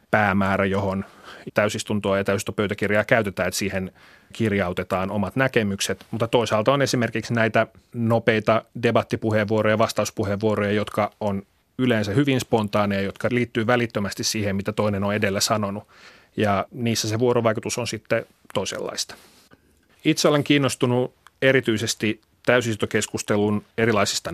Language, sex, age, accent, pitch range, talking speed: Finnish, male, 30-49, native, 105-120 Hz, 115 wpm